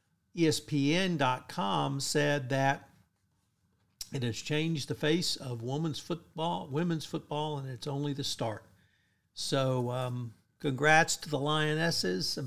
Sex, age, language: male, 60-79, English